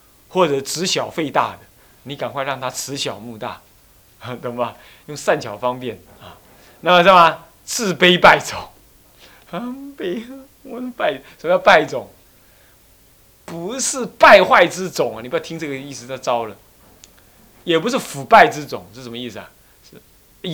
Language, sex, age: Chinese, male, 30-49